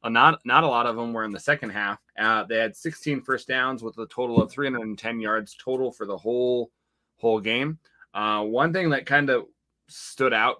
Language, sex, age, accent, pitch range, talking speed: English, male, 20-39, American, 100-125 Hz, 210 wpm